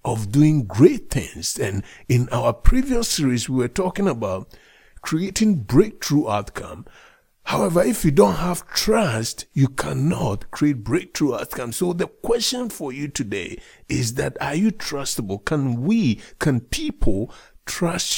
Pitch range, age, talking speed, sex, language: 115-185 Hz, 50-69, 140 wpm, male, English